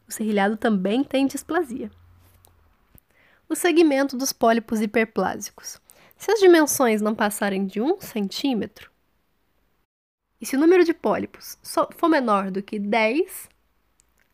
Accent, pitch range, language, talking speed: Brazilian, 210-300 Hz, Portuguese, 120 wpm